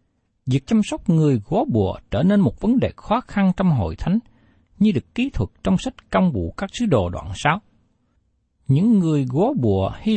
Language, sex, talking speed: Vietnamese, male, 200 wpm